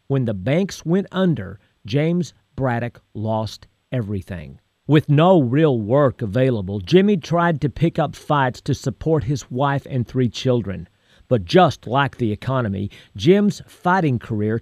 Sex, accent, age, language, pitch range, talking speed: male, American, 50-69, English, 105-160 Hz, 145 wpm